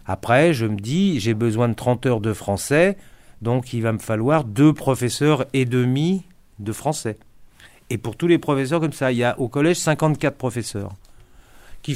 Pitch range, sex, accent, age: 110-145 Hz, male, French, 50-69